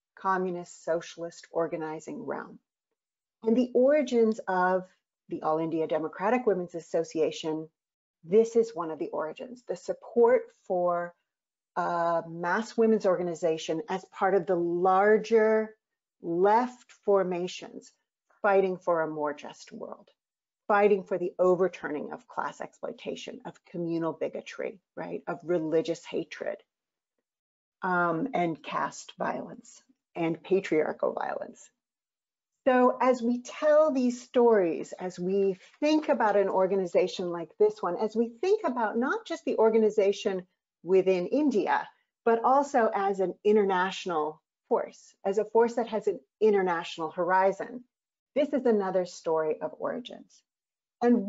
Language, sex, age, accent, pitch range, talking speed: English, female, 40-59, American, 175-235 Hz, 125 wpm